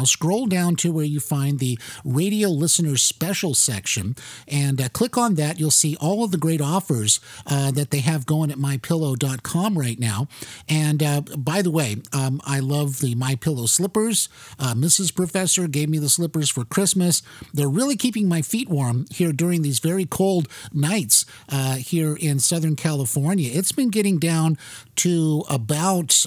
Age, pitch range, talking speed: 50-69, 135-175 Hz, 170 wpm